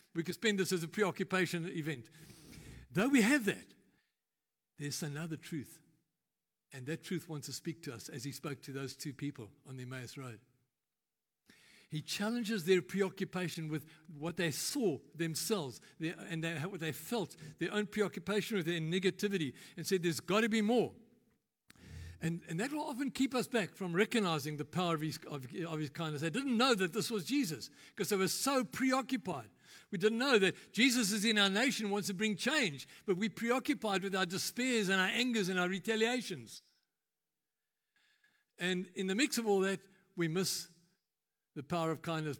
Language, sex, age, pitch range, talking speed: English, male, 60-79, 150-200 Hz, 175 wpm